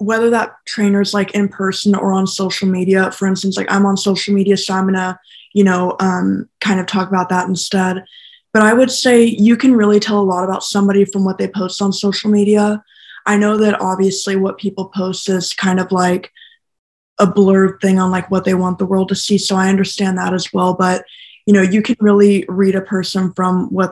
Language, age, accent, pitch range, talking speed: English, 20-39, American, 185-205 Hz, 225 wpm